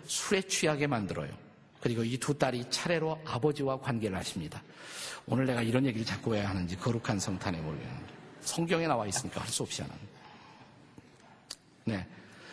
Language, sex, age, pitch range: Korean, male, 50-69, 135-180 Hz